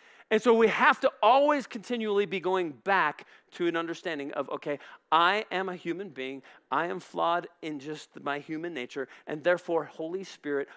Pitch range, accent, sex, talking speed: 125-190 Hz, American, male, 180 wpm